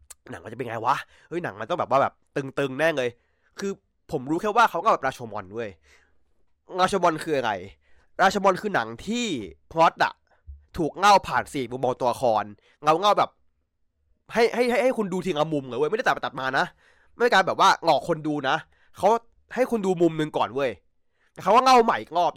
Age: 20-39